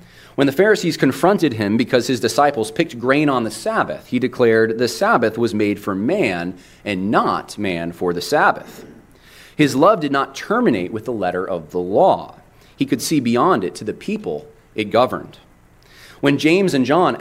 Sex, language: male, English